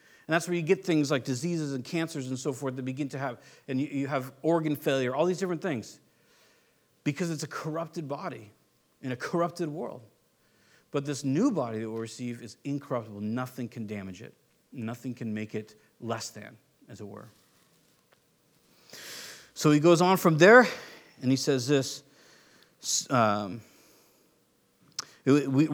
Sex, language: male, English